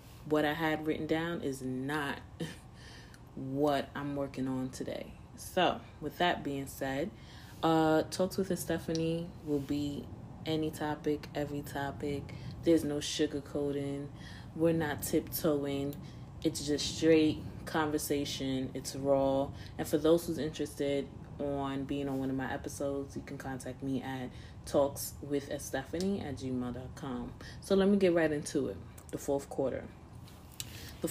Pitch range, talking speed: 135-160 Hz, 140 wpm